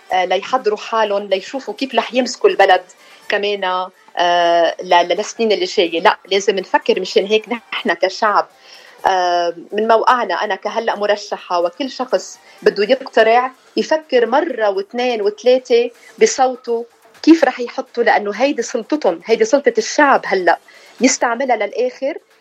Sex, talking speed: female, 120 wpm